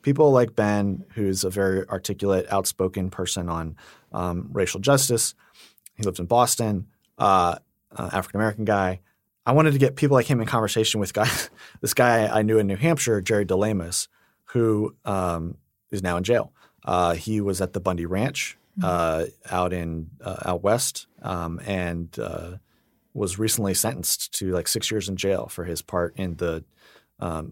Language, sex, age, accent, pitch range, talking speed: English, male, 30-49, American, 90-115 Hz, 175 wpm